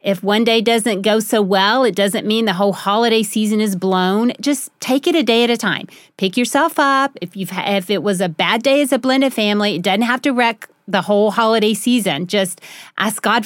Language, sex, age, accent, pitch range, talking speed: English, female, 40-59, American, 200-260 Hz, 230 wpm